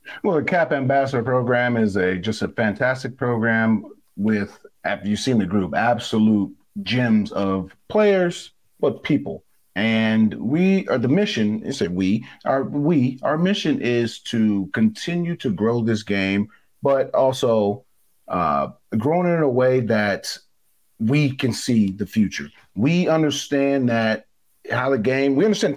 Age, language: 40-59, English